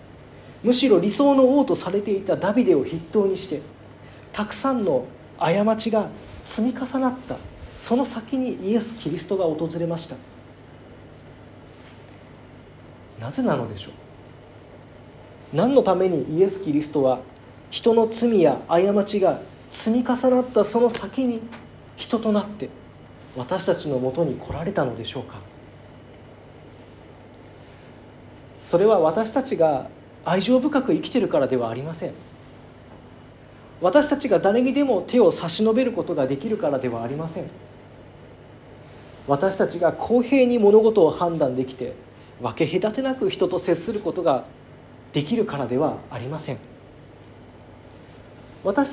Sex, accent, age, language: male, native, 40-59, Japanese